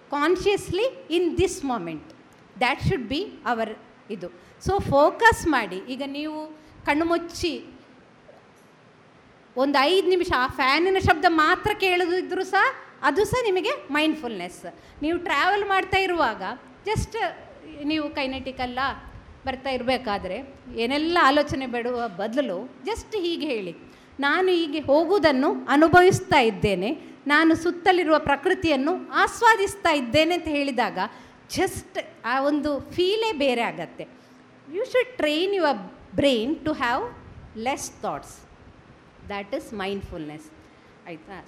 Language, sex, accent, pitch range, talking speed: Kannada, female, native, 260-360 Hz, 110 wpm